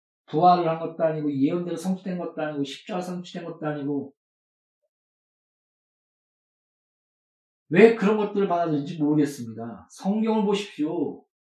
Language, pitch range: Korean, 155-220 Hz